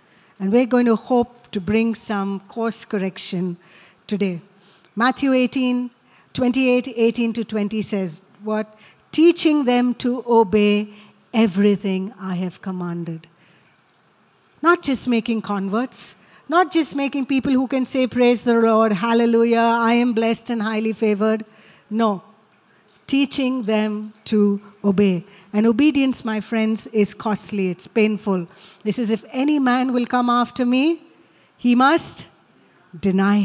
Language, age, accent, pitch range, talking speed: English, 60-79, Indian, 195-245 Hz, 130 wpm